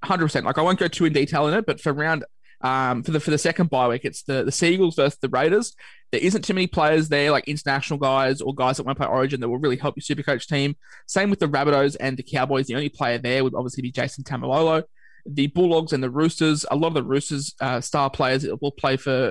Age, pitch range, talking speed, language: 20-39, 130-150 Hz, 255 wpm, English